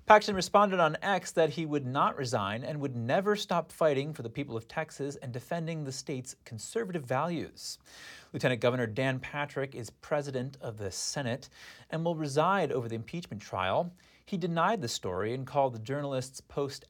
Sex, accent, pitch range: male, American, 120-165 Hz